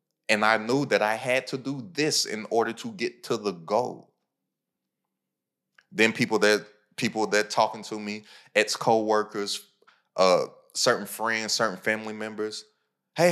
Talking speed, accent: 150 wpm, American